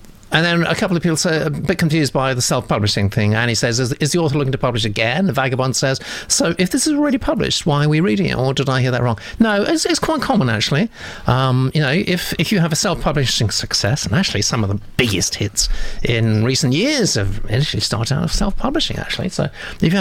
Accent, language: British, English